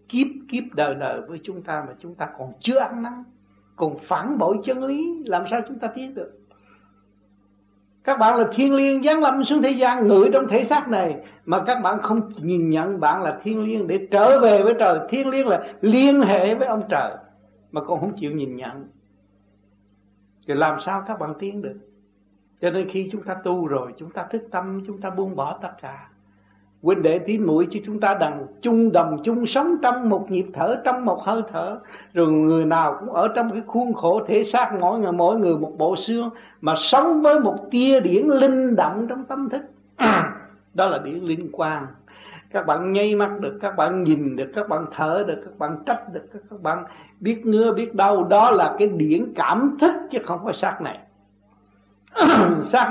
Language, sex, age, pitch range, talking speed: Vietnamese, male, 60-79, 155-235 Hz, 205 wpm